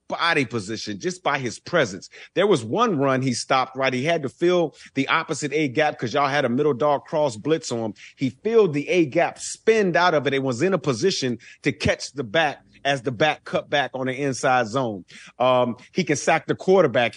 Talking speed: 225 wpm